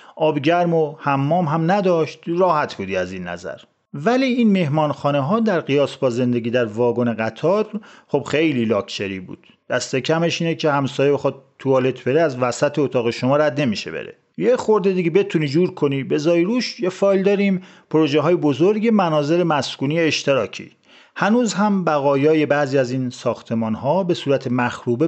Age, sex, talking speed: 40-59, male, 165 wpm